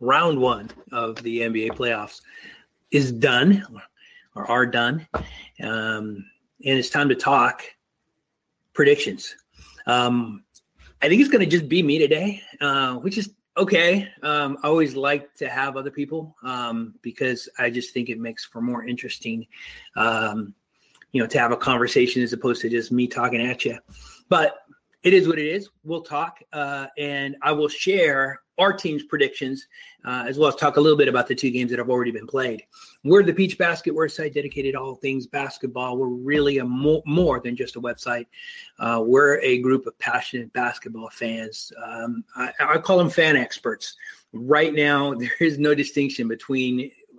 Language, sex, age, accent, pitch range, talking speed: English, male, 30-49, American, 120-155 Hz, 180 wpm